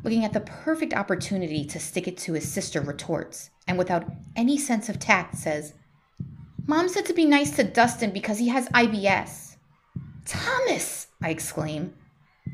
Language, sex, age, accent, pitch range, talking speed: English, female, 30-49, American, 160-255 Hz, 160 wpm